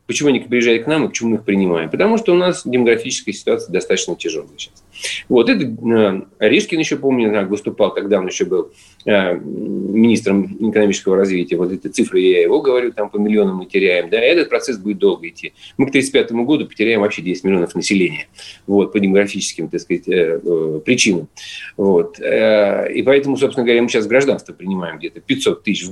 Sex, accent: male, native